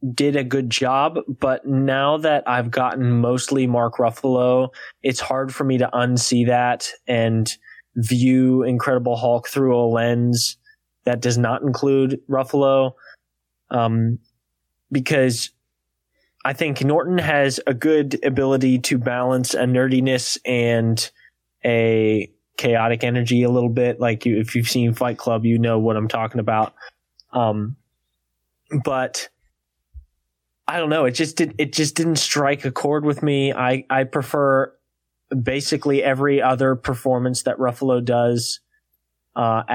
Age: 20-39